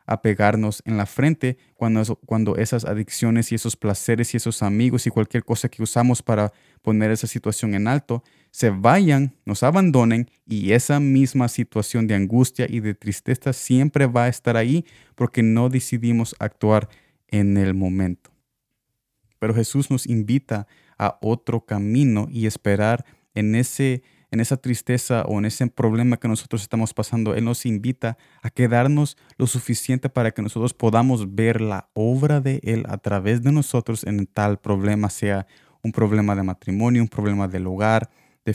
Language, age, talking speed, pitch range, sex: Spanish, 30-49, 170 wpm, 105-125 Hz, male